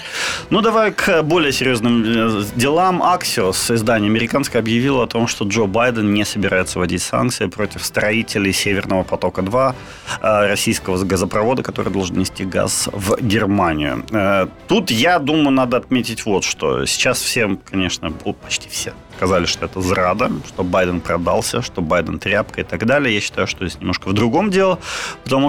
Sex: male